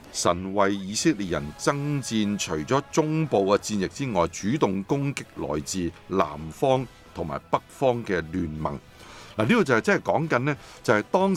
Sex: male